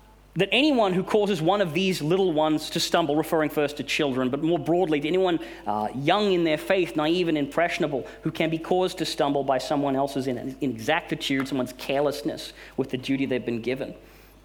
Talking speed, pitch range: 190 wpm, 140-185 Hz